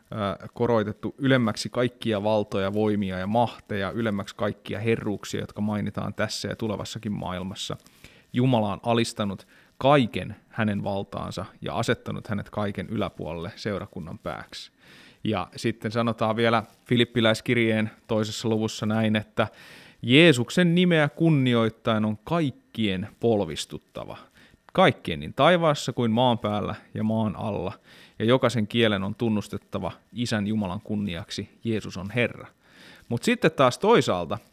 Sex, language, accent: male, Finnish, native